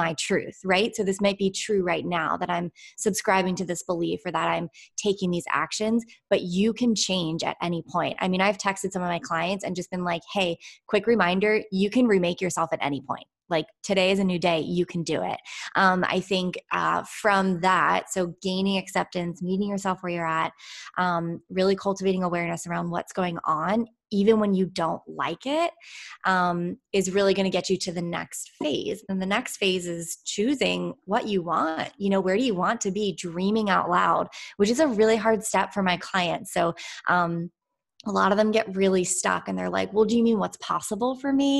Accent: American